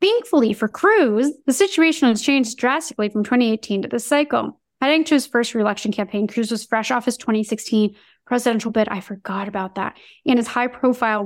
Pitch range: 210-265 Hz